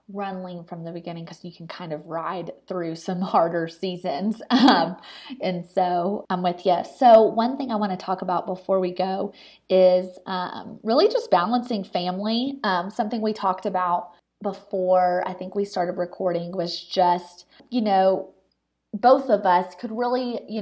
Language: English